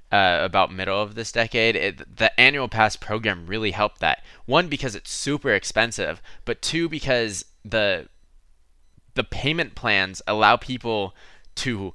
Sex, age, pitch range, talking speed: male, 20-39, 95-120 Hz, 140 wpm